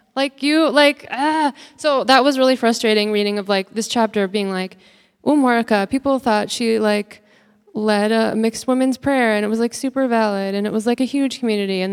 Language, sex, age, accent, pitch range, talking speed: English, female, 20-39, American, 195-245 Hz, 200 wpm